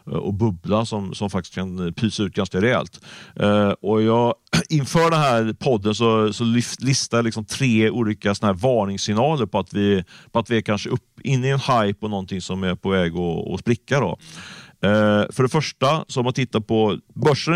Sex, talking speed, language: male, 205 wpm, Swedish